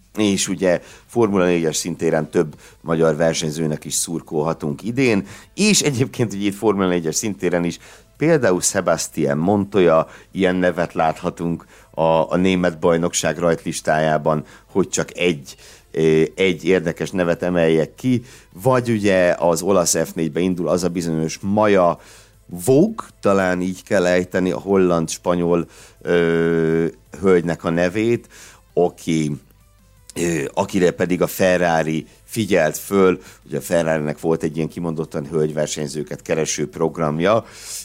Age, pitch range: 60-79, 80-95 Hz